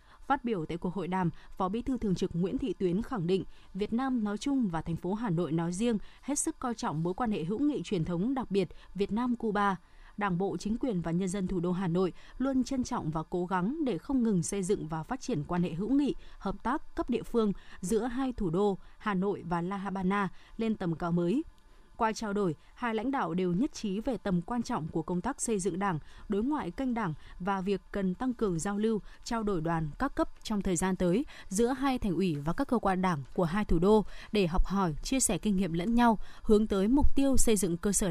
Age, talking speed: 20-39, 250 wpm